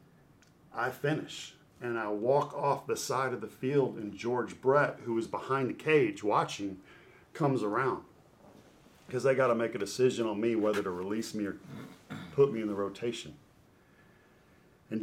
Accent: American